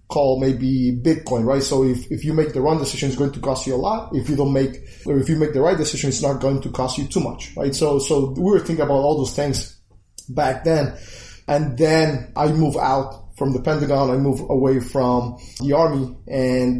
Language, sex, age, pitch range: English, male, 20-39, 130-145 Hz